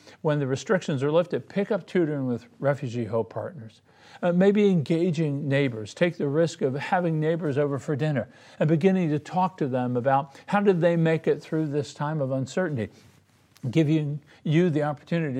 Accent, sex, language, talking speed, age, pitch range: American, male, English, 185 wpm, 50-69, 135-190 Hz